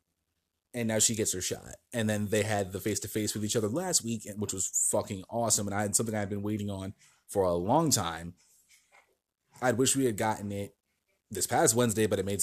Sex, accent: male, American